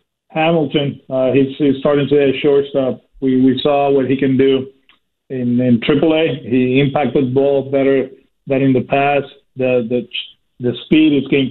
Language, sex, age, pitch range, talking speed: English, male, 40-59, 125-140 Hz, 175 wpm